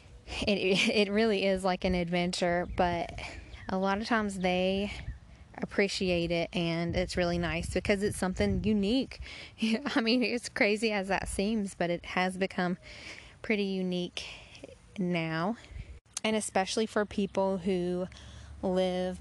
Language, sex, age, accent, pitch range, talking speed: English, female, 20-39, American, 175-210 Hz, 135 wpm